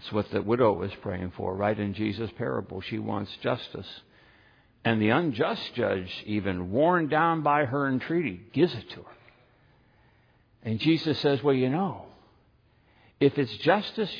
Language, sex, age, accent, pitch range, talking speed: English, male, 60-79, American, 110-170 Hz, 155 wpm